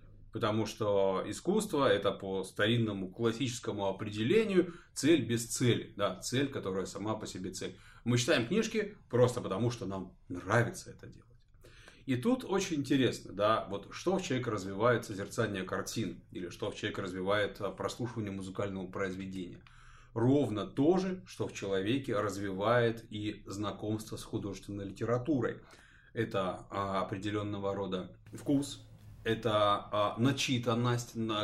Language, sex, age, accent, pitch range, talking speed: Russian, male, 30-49, native, 100-125 Hz, 125 wpm